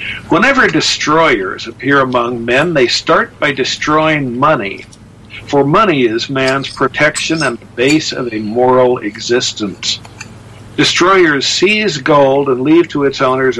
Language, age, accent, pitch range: English, 60-79, American, 115-170 Hz